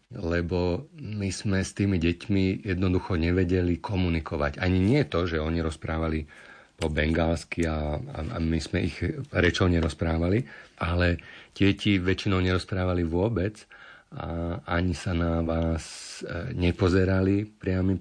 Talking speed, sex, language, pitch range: 120 wpm, male, Slovak, 85-100 Hz